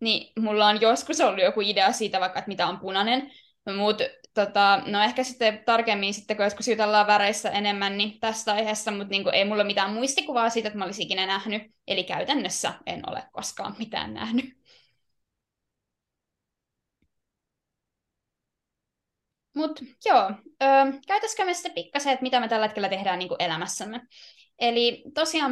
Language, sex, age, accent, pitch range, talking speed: Finnish, female, 20-39, native, 205-255 Hz, 150 wpm